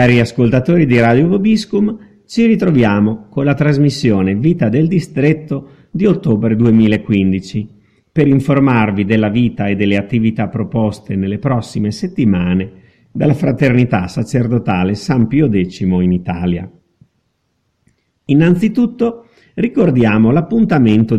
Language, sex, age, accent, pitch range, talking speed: Italian, male, 50-69, native, 105-155 Hz, 110 wpm